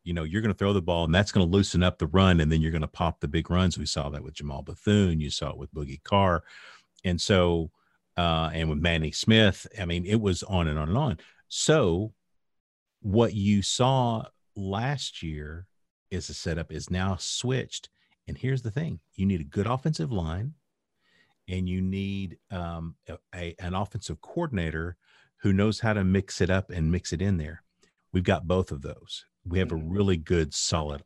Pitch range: 80-100 Hz